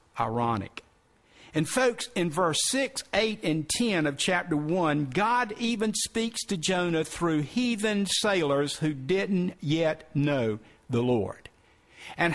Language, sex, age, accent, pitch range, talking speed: English, male, 50-69, American, 150-215 Hz, 130 wpm